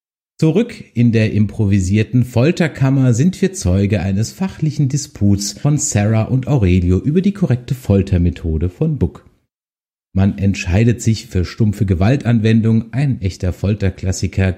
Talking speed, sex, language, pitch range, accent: 125 wpm, male, German, 95-130 Hz, German